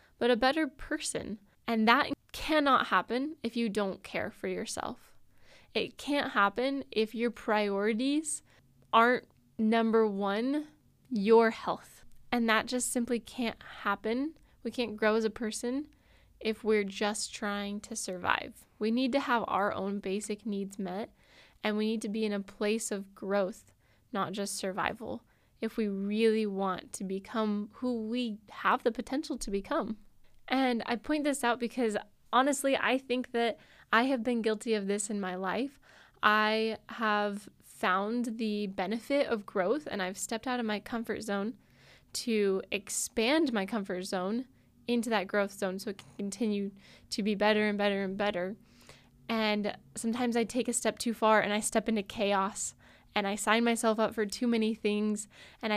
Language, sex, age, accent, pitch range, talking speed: English, female, 10-29, American, 205-240 Hz, 165 wpm